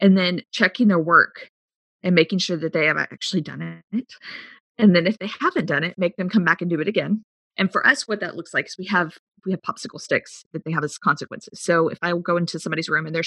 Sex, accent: female, American